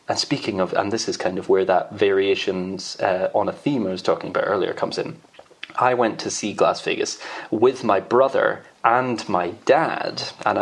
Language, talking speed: English, 200 wpm